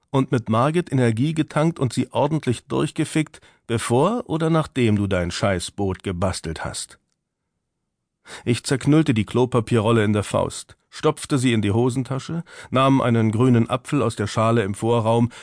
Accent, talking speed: German, 150 wpm